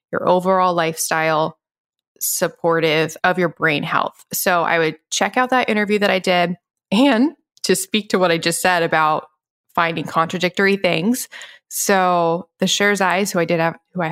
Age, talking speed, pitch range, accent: 20-39, 170 wpm, 165-200 Hz, American